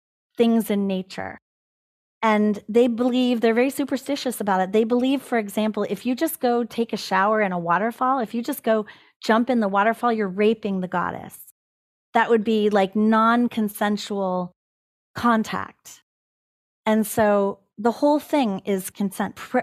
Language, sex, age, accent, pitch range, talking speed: English, female, 30-49, American, 210-255 Hz, 155 wpm